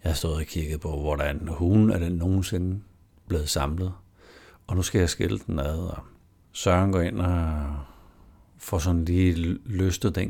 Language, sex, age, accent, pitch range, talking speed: Danish, male, 60-79, native, 80-95 Hz, 170 wpm